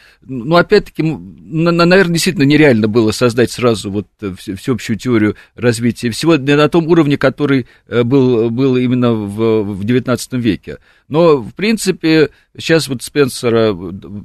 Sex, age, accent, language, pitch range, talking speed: male, 40-59, native, Russian, 105-135 Hz, 125 wpm